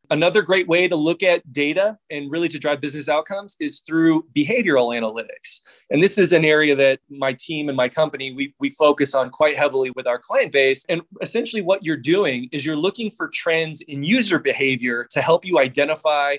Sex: male